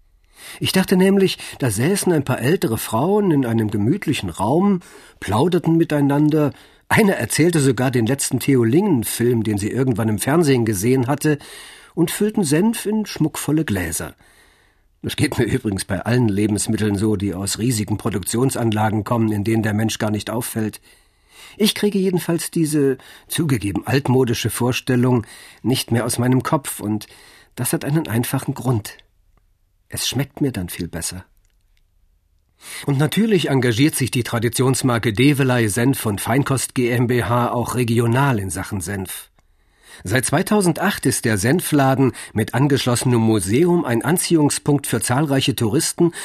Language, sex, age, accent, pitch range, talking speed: German, male, 50-69, German, 110-150 Hz, 140 wpm